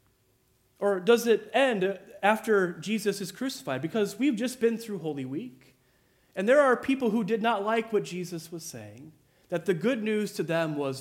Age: 30-49